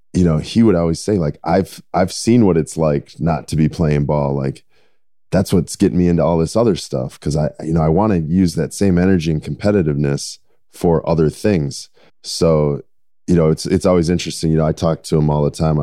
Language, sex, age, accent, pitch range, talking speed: English, male, 20-39, American, 75-90 Hz, 230 wpm